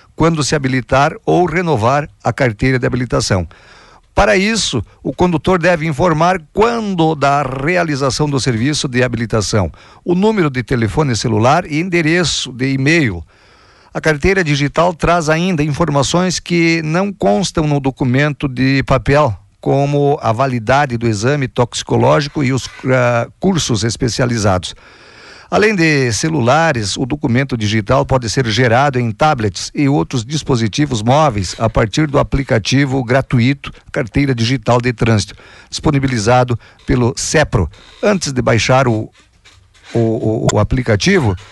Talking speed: 125 wpm